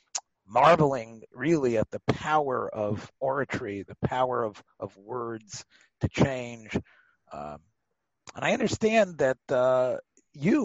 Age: 50-69